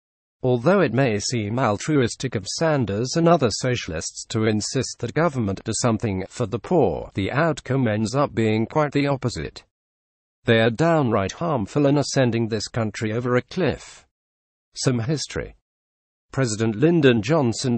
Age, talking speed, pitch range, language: 50-69, 145 wpm, 105-135 Hz, English